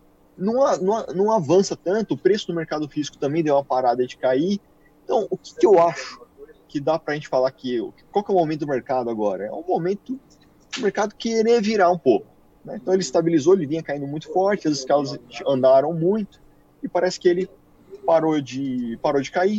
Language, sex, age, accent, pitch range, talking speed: Portuguese, male, 20-39, Brazilian, 140-180 Hz, 210 wpm